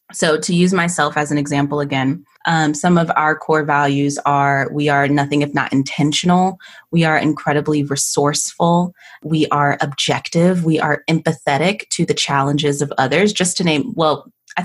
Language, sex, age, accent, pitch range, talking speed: English, female, 20-39, American, 145-180 Hz, 170 wpm